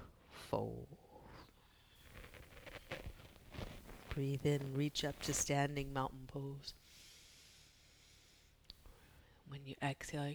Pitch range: 120-150 Hz